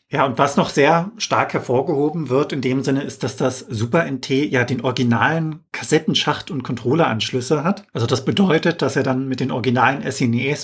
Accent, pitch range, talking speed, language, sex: German, 125-150 Hz, 185 wpm, German, male